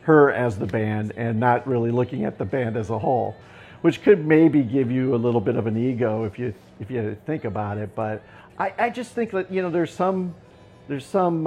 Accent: American